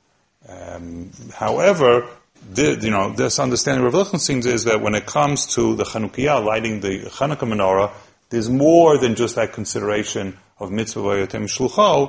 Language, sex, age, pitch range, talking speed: English, male, 30-49, 100-135 Hz, 150 wpm